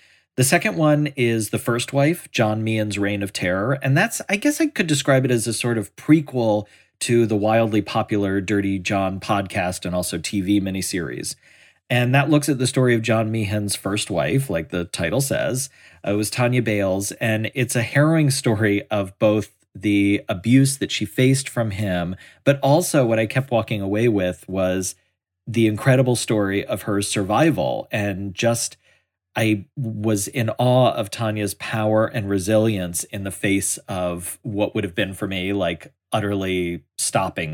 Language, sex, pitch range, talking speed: English, male, 100-125 Hz, 175 wpm